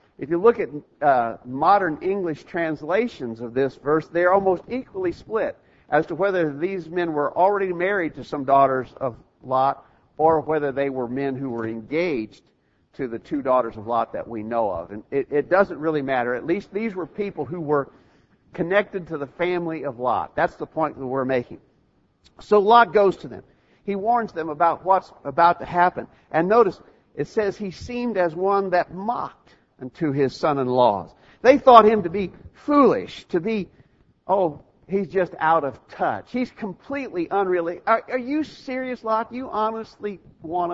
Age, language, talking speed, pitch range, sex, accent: 50-69, English, 185 wpm, 140-195 Hz, male, American